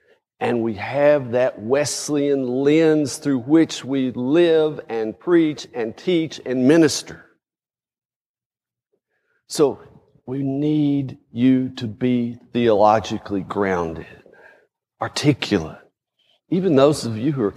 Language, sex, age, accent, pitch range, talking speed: English, male, 50-69, American, 125-180 Hz, 105 wpm